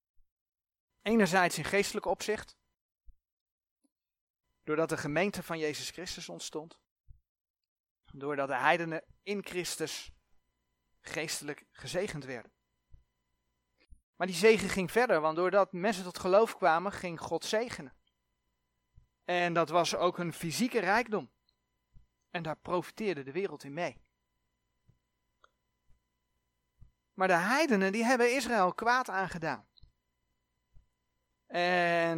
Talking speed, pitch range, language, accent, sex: 105 wpm, 135-195 Hz, Dutch, Dutch, male